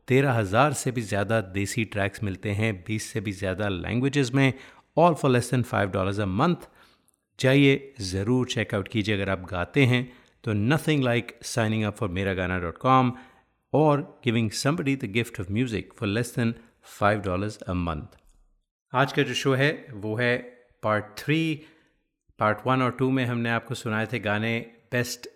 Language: Hindi